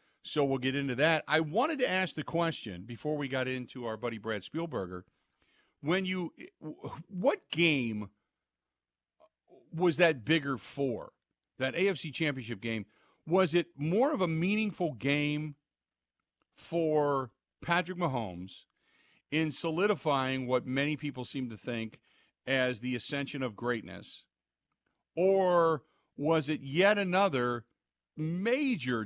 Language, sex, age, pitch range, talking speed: English, male, 50-69, 115-160 Hz, 125 wpm